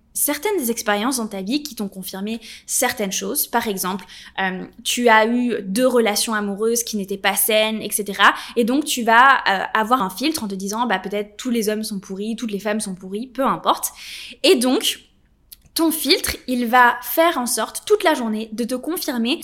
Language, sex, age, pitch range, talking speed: French, female, 10-29, 210-265 Hz, 200 wpm